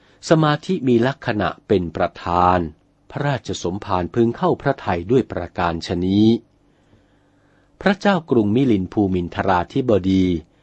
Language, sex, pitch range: Thai, male, 95-130 Hz